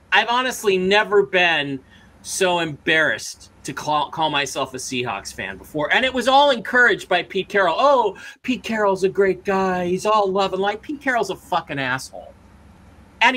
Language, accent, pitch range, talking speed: English, American, 170-225 Hz, 175 wpm